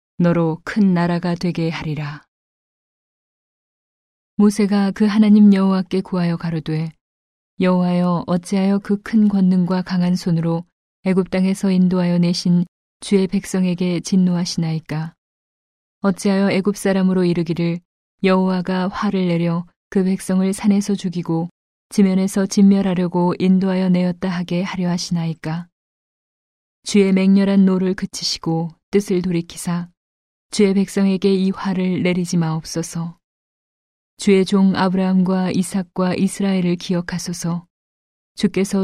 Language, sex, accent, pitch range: Korean, female, native, 175-190 Hz